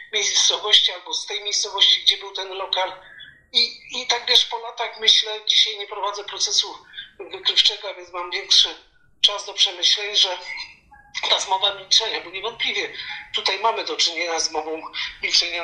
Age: 50-69